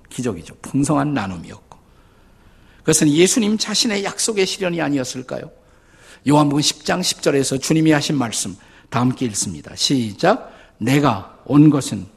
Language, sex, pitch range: Korean, male, 125-180 Hz